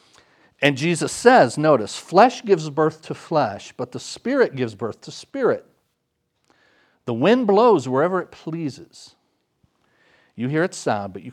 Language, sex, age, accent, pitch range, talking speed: English, male, 50-69, American, 115-150 Hz, 150 wpm